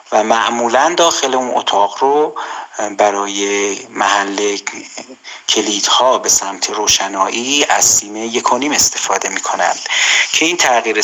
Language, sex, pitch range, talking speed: Persian, male, 100-130 Hz, 110 wpm